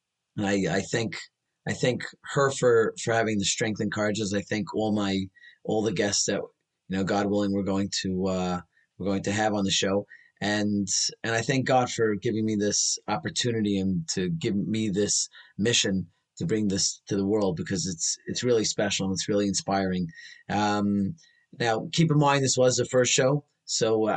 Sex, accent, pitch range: male, American, 95-115 Hz